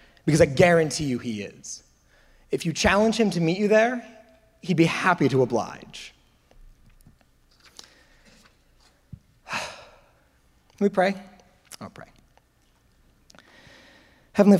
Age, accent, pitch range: 30-49, American, 120-150 Hz